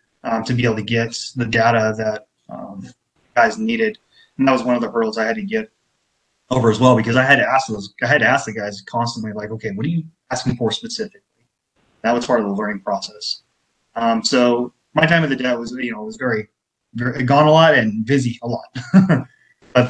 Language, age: English, 20-39